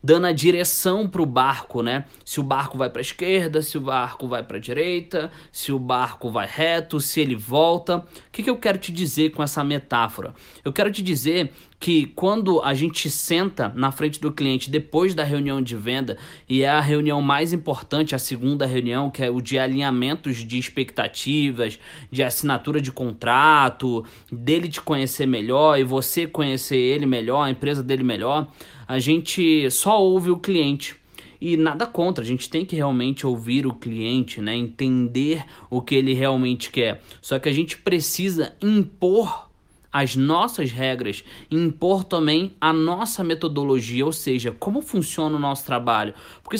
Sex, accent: male, Brazilian